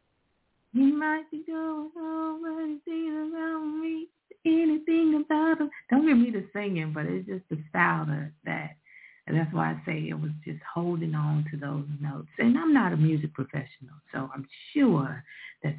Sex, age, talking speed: female, 30-49, 170 wpm